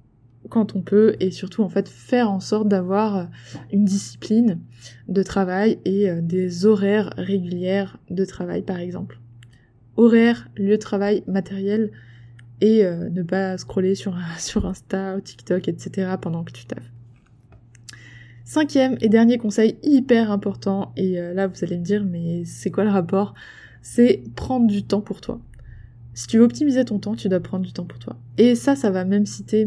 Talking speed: 175 wpm